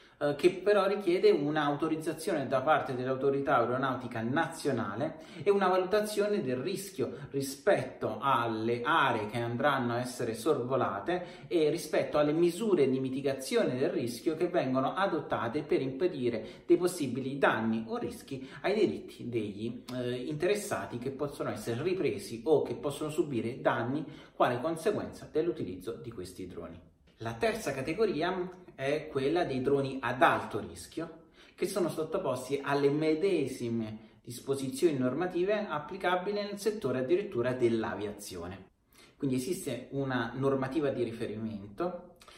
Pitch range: 120-175 Hz